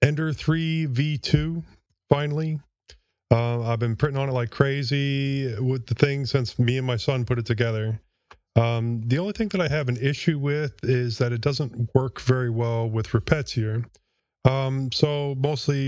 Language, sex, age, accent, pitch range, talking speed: English, male, 20-39, American, 110-130 Hz, 170 wpm